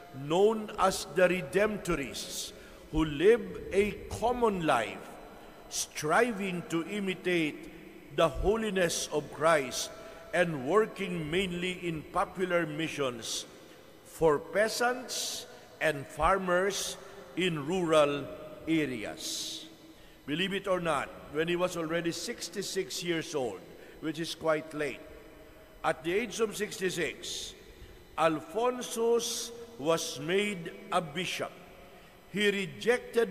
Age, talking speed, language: 60-79, 100 wpm, English